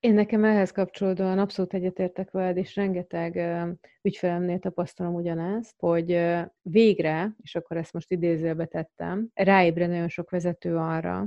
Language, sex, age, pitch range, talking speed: Hungarian, female, 30-49, 170-190 Hz, 135 wpm